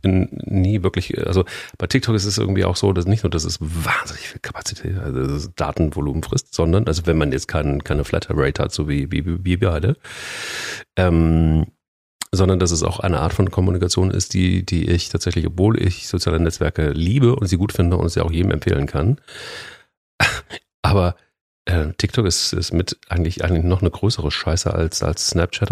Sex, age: male, 40-59